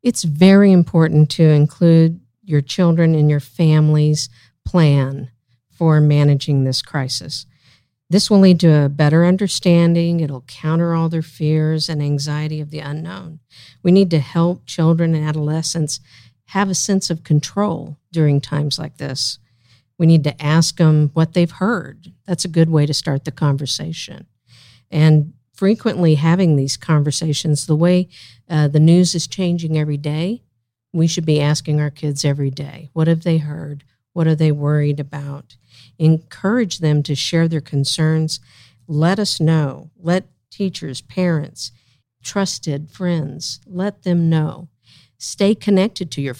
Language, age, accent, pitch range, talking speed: English, 50-69, American, 140-170 Hz, 150 wpm